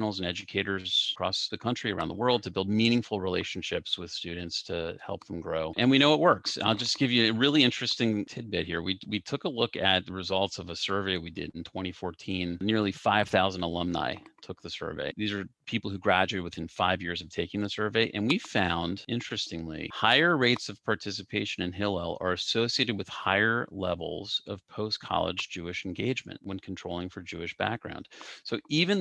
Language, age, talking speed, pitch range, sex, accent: English, 40-59, 190 wpm, 95-115 Hz, male, American